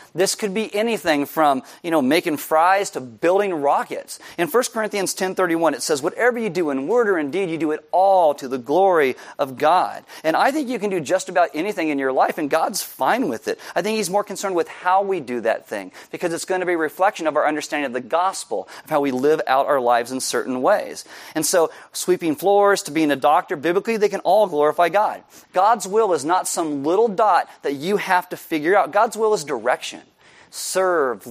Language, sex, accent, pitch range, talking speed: English, male, American, 150-200 Hz, 230 wpm